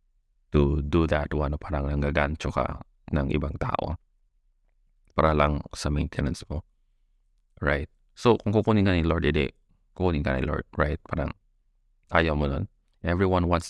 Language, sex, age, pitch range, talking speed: Filipino, male, 20-39, 75-95 Hz, 155 wpm